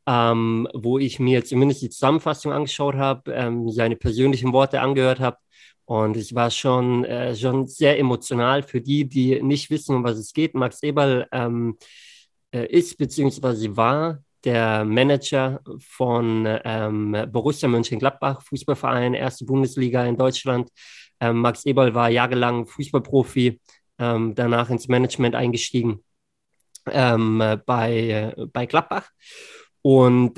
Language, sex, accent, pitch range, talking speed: German, male, German, 120-140 Hz, 130 wpm